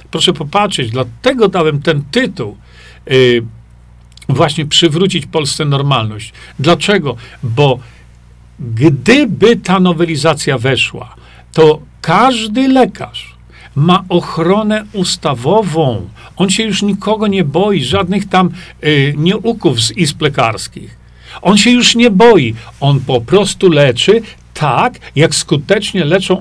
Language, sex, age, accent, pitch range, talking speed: Polish, male, 50-69, native, 125-195 Hz, 110 wpm